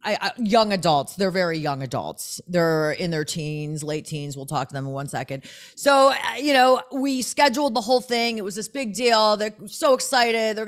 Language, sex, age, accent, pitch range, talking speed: English, female, 30-49, American, 190-245 Hz, 210 wpm